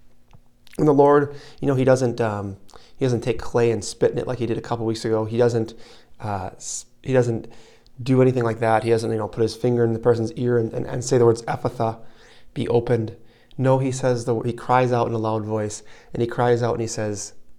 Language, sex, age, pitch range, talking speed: English, male, 30-49, 115-125 Hz, 240 wpm